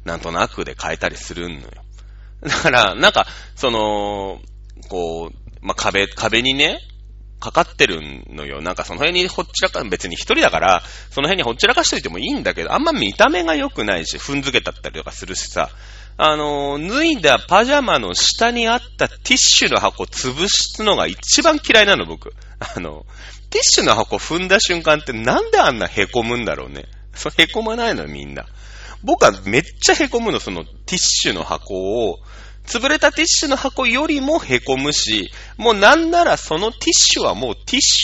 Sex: male